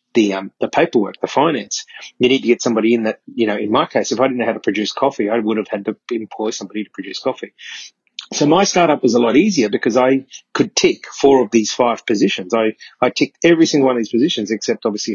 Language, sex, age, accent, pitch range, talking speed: English, male, 30-49, Australian, 110-135 Hz, 250 wpm